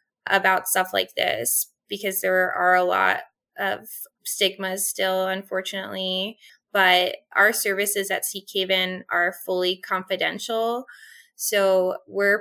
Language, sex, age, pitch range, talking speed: English, female, 20-39, 180-200 Hz, 115 wpm